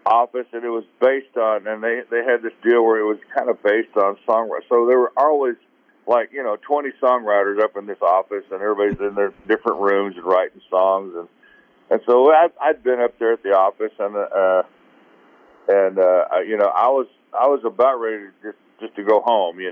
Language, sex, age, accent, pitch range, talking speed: English, male, 50-69, American, 100-130 Hz, 220 wpm